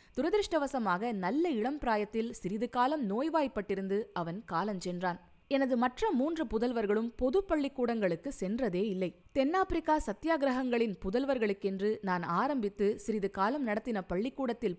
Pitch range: 190-270 Hz